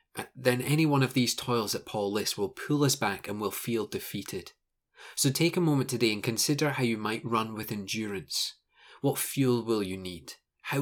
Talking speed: 200 wpm